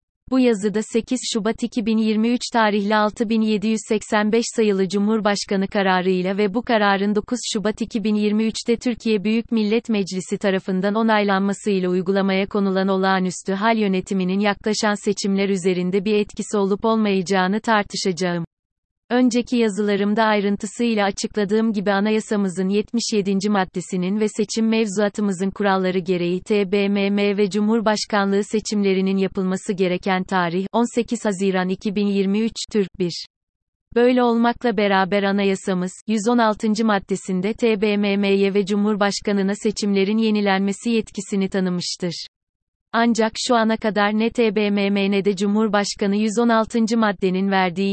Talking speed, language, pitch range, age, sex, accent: 105 wpm, Turkish, 195-220 Hz, 30-49, female, native